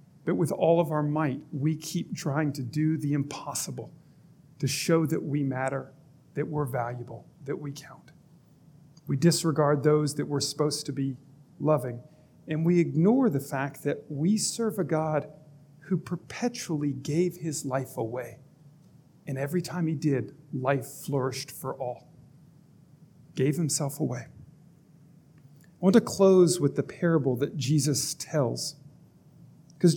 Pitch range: 145-170 Hz